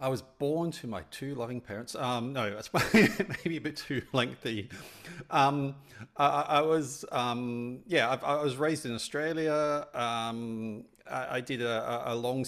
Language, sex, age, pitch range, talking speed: English, male, 40-59, 105-120 Hz, 160 wpm